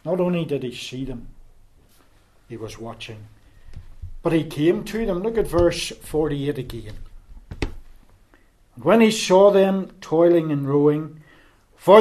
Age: 60-79